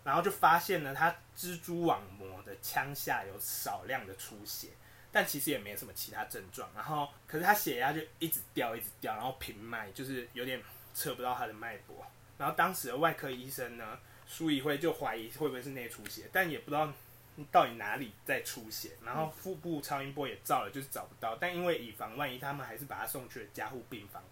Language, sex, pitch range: Chinese, male, 120-160 Hz